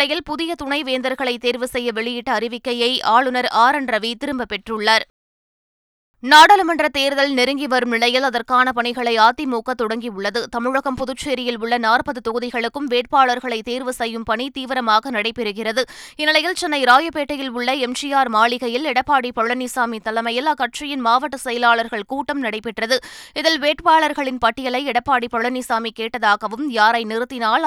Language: Tamil